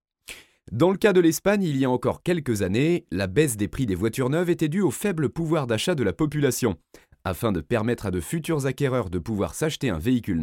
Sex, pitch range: male, 115-165 Hz